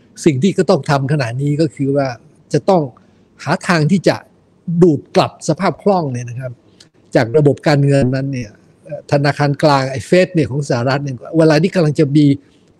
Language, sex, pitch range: Thai, male, 135-170 Hz